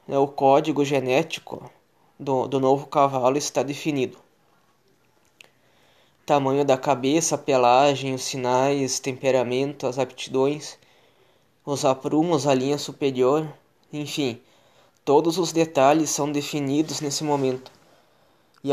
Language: Portuguese